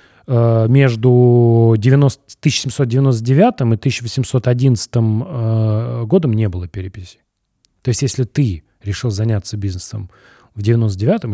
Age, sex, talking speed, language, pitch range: 30-49, male, 90 wpm, Russian, 100-125 Hz